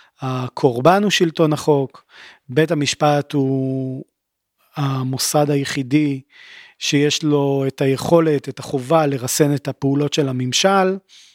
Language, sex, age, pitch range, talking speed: Hebrew, male, 40-59, 135-165 Hz, 105 wpm